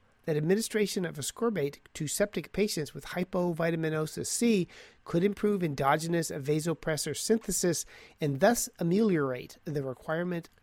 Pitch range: 140-190 Hz